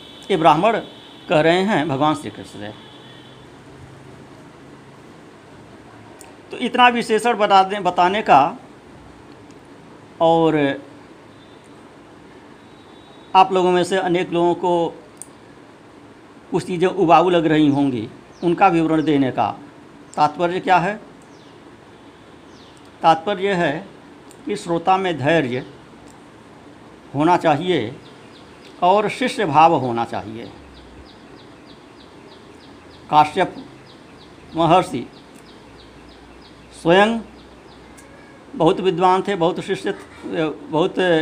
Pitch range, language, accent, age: 160-195 Hz, Hindi, native, 50-69